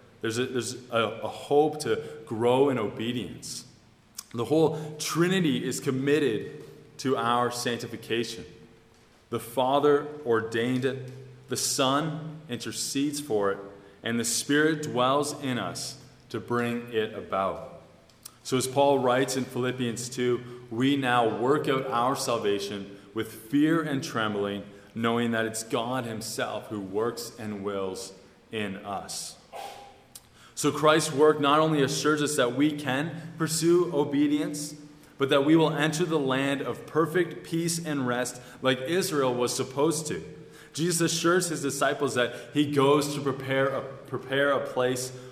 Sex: male